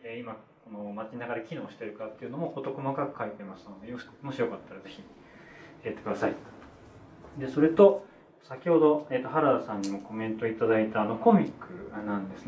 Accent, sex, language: native, male, Japanese